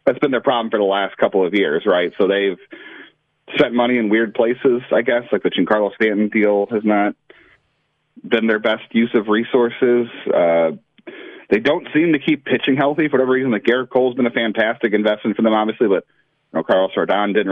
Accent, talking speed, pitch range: American, 205 wpm, 100-125 Hz